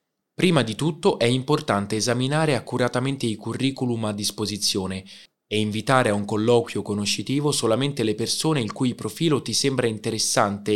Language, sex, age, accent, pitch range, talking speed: Italian, male, 20-39, native, 105-140 Hz, 145 wpm